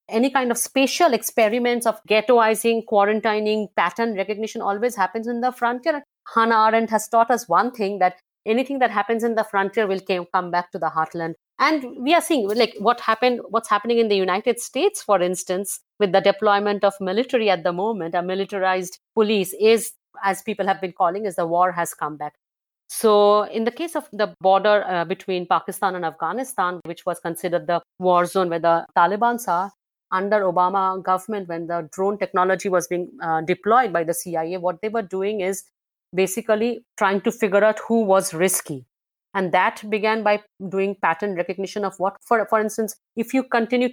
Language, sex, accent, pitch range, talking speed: English, female, Indian, 185-230 Hz, 185 wpm